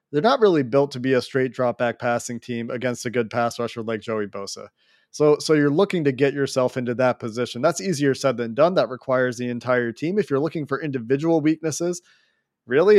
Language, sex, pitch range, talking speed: English, male, 125-145 Hz, 215 wpm